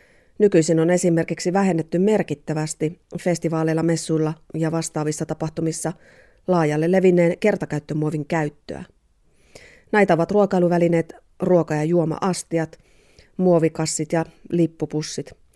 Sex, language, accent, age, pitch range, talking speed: female, Finnish, native, 30-49, 160-180 Hz, 90 wpm